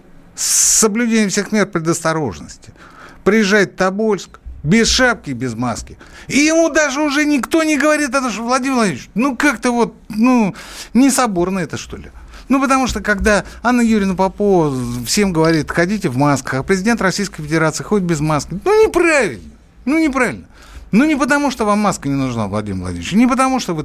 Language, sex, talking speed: Russian, male, 175 wpm